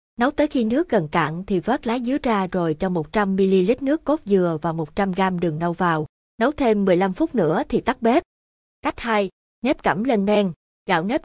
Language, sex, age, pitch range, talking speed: Vietnamese, female, 20-39, 180-230 Hz, 205 wpm